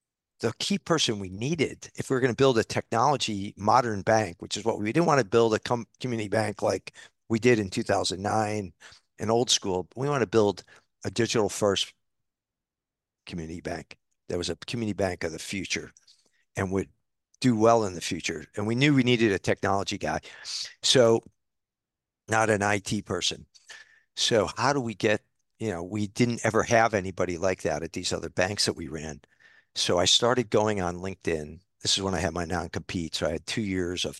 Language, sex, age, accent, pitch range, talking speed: English, male, 50-69, American, 95-120 Hz, 195 wpm